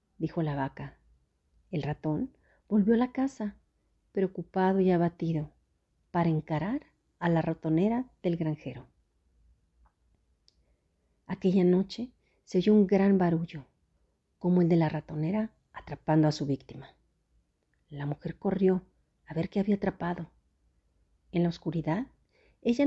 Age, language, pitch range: 40-59, Spanish, 135-195 Hz